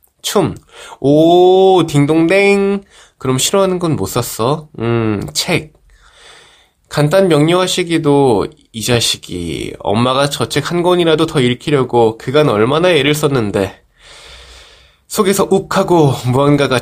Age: 20-39